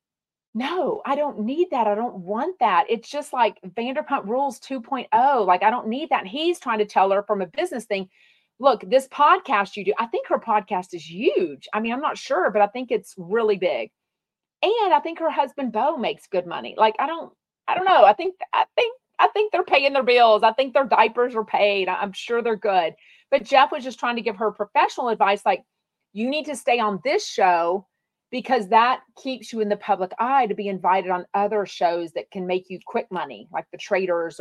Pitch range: 185-255 Hz